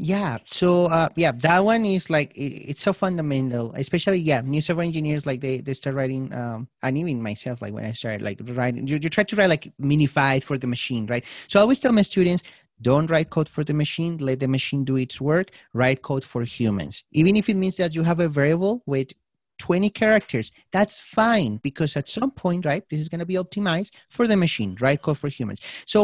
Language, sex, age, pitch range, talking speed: English, male, 30-49, 135-185 Hz, 225 wpm